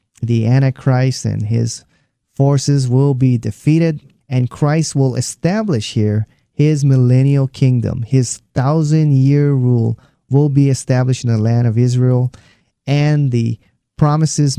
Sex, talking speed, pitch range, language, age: male, 130 wpm, 115-140 Hz, English, 30-49